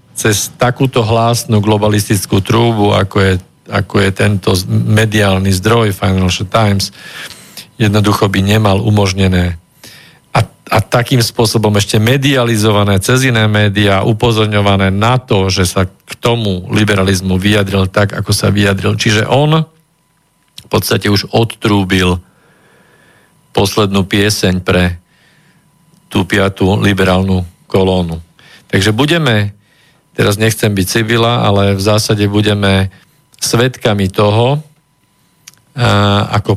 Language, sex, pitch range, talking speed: Slovak, male, 100-115 Hz, 110 wpm